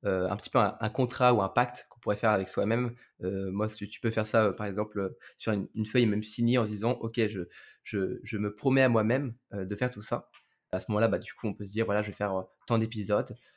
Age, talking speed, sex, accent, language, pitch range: 20-39, 280 wpm, male, French, French, 105-125 Hz